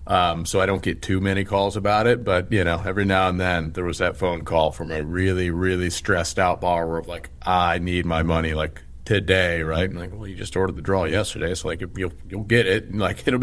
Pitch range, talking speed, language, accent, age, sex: 85-95 Hz, 245 wpm, English, American, 40-59, male